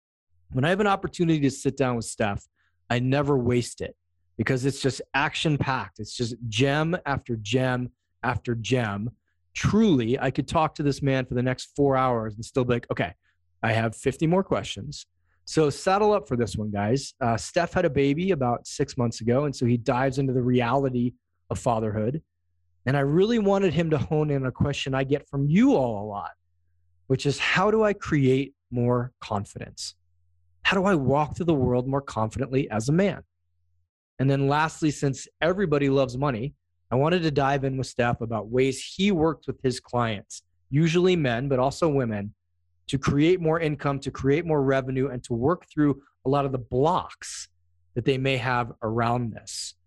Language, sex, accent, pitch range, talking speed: English, male, American, 110-145 Hz, 190 wpm